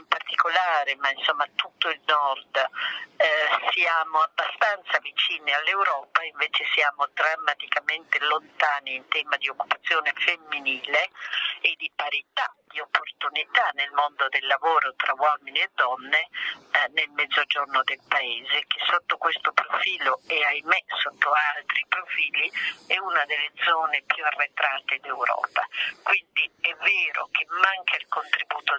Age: 50-69